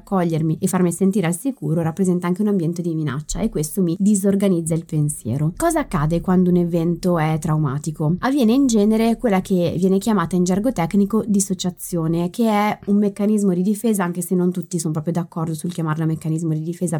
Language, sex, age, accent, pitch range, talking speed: Italian, female, 20-39, native, 165-220 Hz, 185 wpm